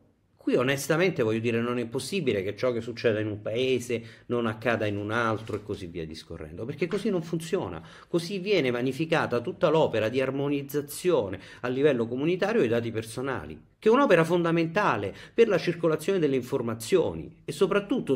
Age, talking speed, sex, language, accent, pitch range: 40-59, 170 wpm, male, Italian, native, 115-175 Hz